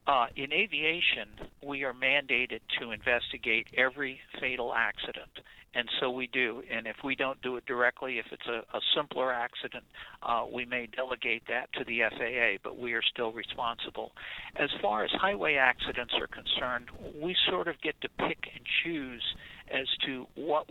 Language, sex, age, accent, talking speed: English, male, 60-79, American, 170 wpm